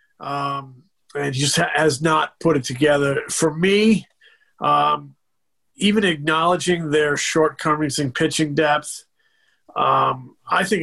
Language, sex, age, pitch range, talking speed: English, male, 40-59, 130-165 Hz, 120 wpm